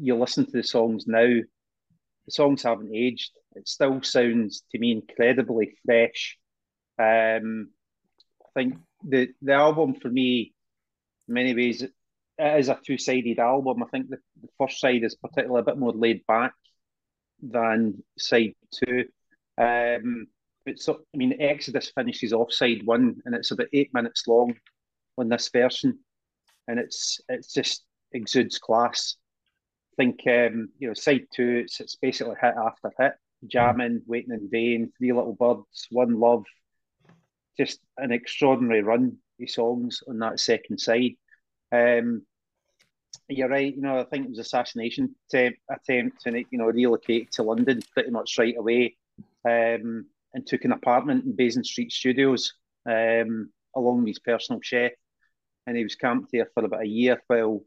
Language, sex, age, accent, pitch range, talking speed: English, male, 30-49, British, 115-130 Hz, 160 wpm